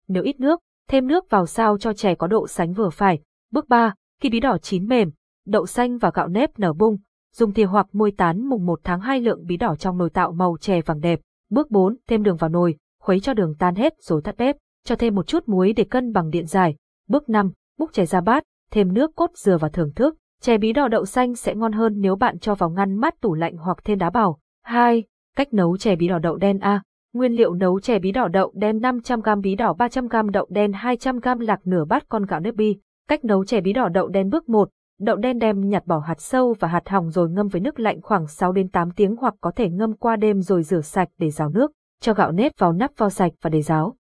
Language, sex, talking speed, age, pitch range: Vietnamese, female, 255 wpm, 20-39, 180-235 Hz